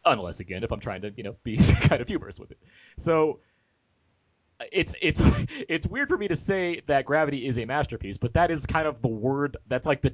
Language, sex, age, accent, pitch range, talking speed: English, male, 30-49, American, 105-140 Hz, 225 wpm